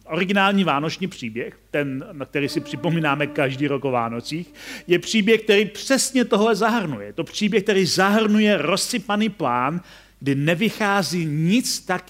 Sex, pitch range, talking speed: male, 150-205 Hz, 140 wpm